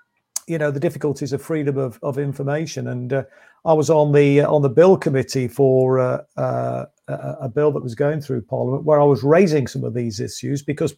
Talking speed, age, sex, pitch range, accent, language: 220 wpm, 50-69, male, 140-180 Hz, British, English